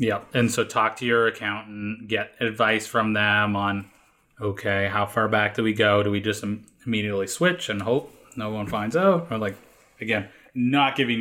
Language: English